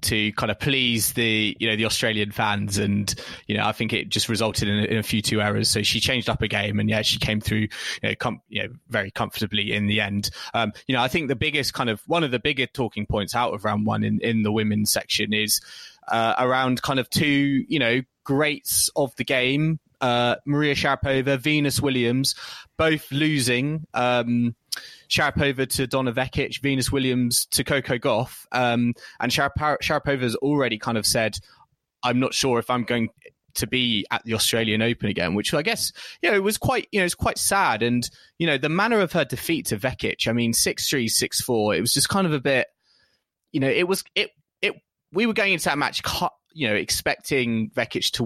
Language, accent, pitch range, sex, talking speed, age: English, British, 110-140 Hz, male, 215 wpm, 20-39